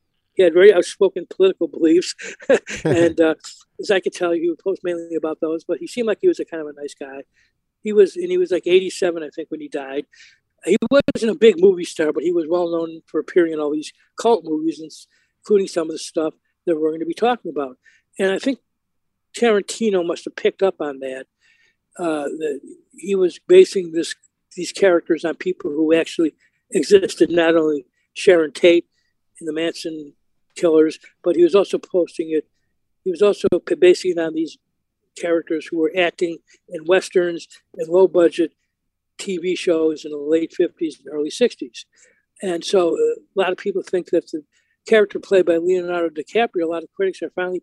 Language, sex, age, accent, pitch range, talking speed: English, male, 60-79, American, 160-260 Hz, 195 wpm